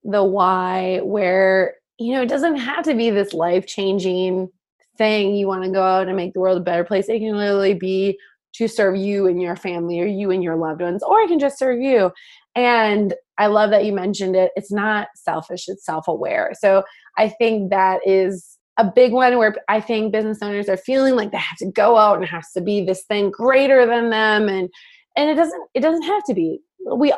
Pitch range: 185-225 Hz